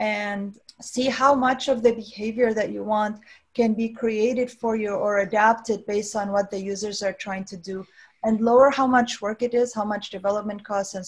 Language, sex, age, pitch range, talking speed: English, female, 30-49, 190-225 Hz, 205 wpm